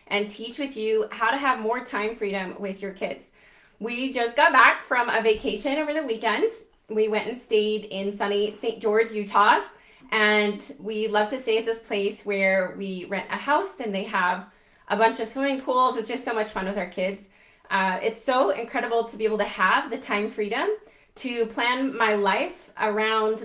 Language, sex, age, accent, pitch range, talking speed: English, female, 20-39, American, 195-230 Hz, 200 wpm